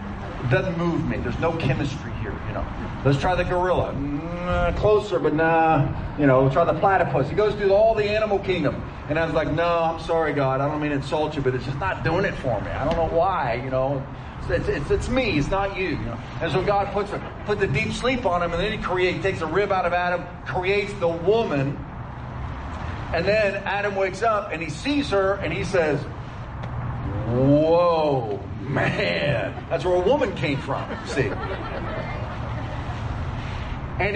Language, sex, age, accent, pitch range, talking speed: English, male, 40-59, American, 130-185 Hz, 200 wpm